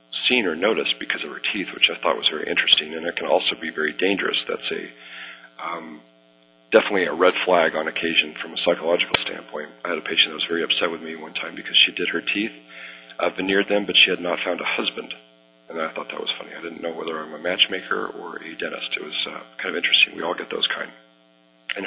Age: 40-59